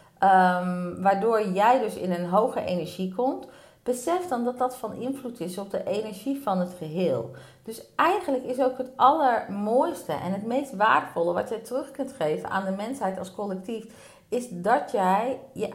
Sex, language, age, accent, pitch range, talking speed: female, Dutch, 40-59, Dutch, 180-250 Hz, 175 wpm